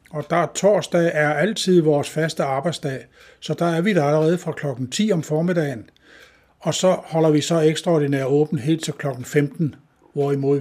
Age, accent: 60-79, native